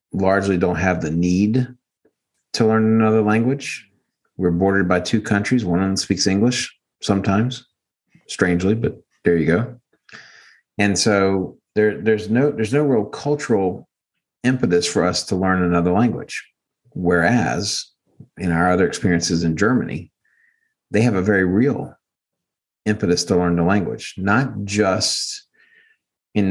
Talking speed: 140 wpm